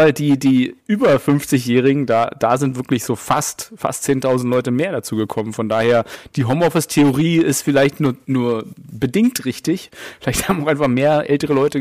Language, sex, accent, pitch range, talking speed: German, male, German, 120-145 Hz, 170 wpm